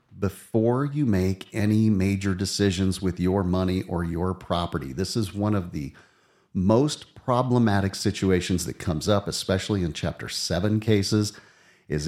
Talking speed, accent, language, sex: 145 wpm, American, English, male